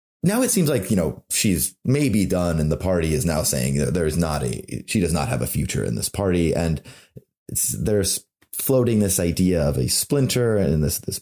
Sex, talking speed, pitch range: male, 210 wpm, 80-120 Hz